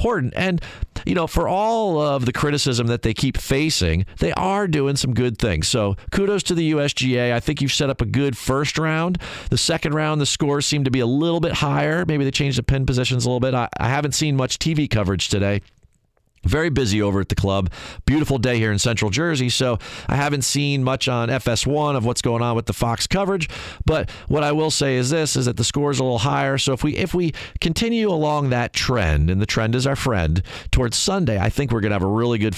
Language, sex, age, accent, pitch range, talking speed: English, male, 40-59, American, 90-135 Hz, 235 wpm